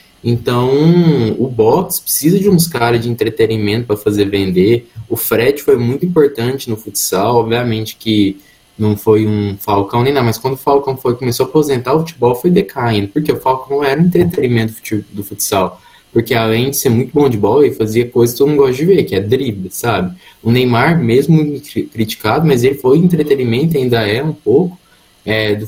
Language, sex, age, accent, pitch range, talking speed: Portuguese, male, 20-39, Brazilian, 110-150 Hz, 190 wpm